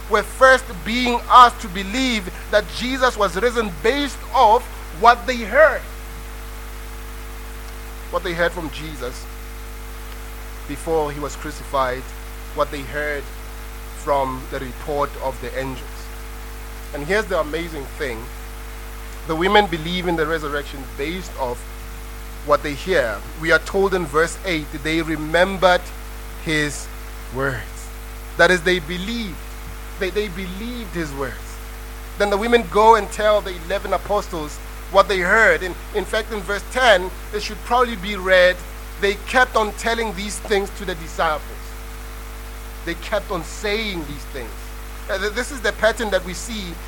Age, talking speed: 30-49, 145 wpm